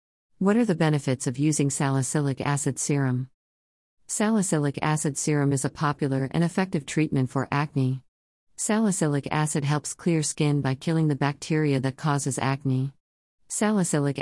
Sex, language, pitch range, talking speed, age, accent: female, English, 135-155 Hz, 140 wpm, 50-69, American